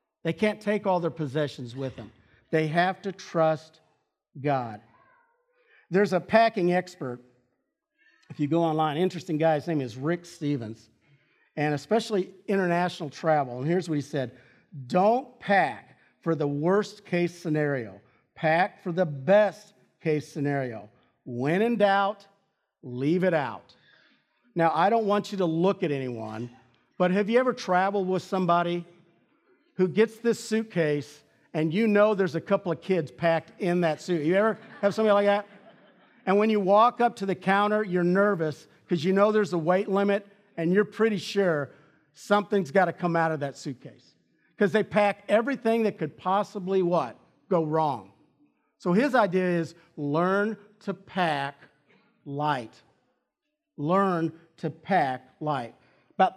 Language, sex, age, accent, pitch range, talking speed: English, male, 50-69, American, 150-205 Hz, 155 wpm